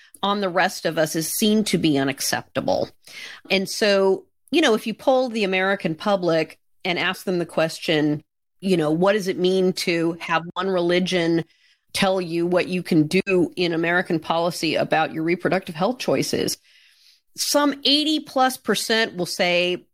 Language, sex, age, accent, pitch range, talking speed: English, female, 40-59, American, 170-220 Hz, 165 wpm